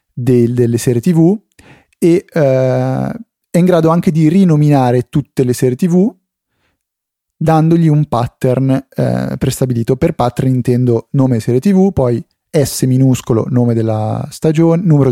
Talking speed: 135 wpm